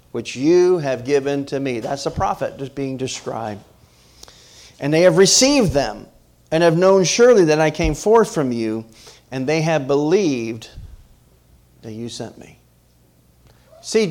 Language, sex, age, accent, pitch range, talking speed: English, male, 40-59, American, 120-175 Hz, 155 wpm